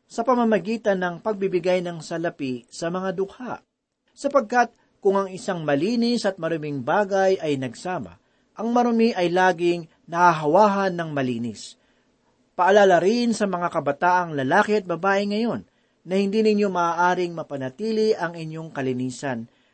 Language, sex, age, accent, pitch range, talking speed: Filipino, male, 40-59, native, 155-210 Hz, 130 wpm